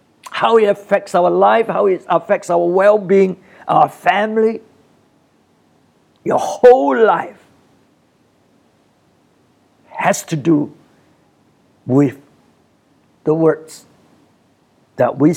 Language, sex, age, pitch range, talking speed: English, male, 60-79, 135-190 Hz, 90 wpm